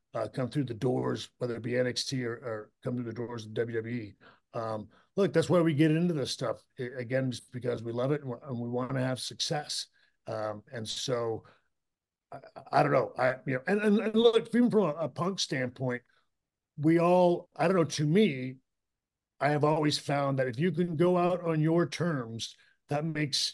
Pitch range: 120-160 Hz